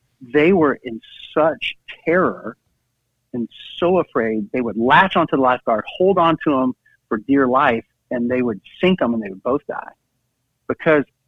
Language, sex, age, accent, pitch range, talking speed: English, male, 50-69, American, 120-155 Hz, 165 wpm